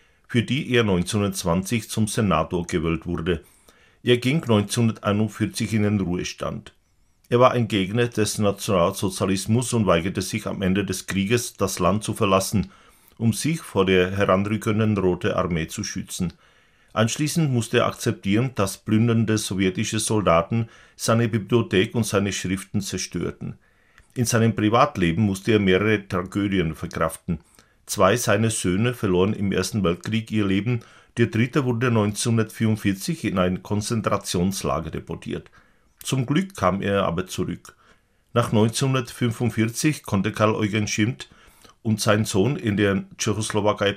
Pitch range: 95-115 Hz